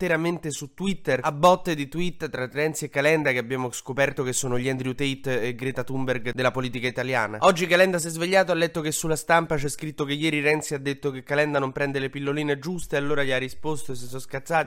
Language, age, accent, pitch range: Italian, 20-39, native, 130-165 Hz